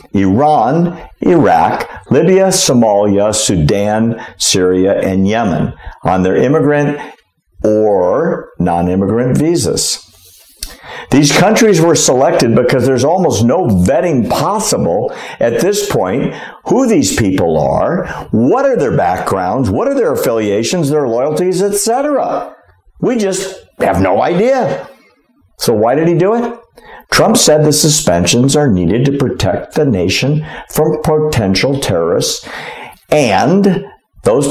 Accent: American